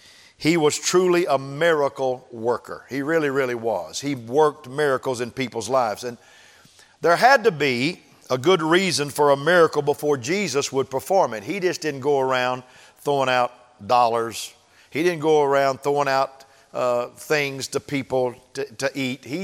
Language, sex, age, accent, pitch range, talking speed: English, male, 50-69, American, 135-170 Hz, 165 wpm